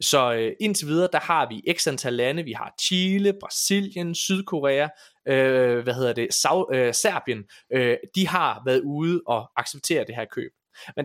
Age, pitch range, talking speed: 20-39, 120-175 Hz, 180 wpm